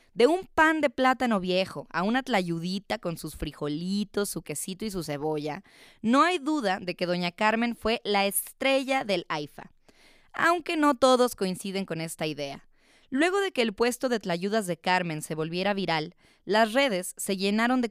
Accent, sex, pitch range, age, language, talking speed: Mexican, female, 170-240 Hz, 20-39, Spanish, 180 wpm